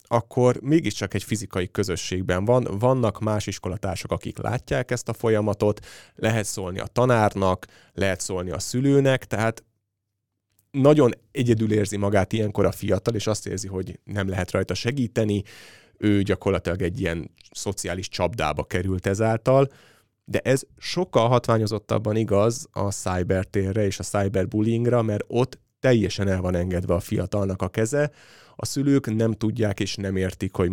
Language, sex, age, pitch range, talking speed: Hungarian, male, 30-49, 95-115 Hz, 145 wpm